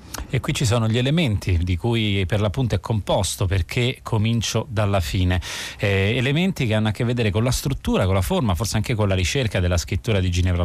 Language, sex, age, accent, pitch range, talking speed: Italian, male, 30-49, native, 95-115 Hz, 215 wpm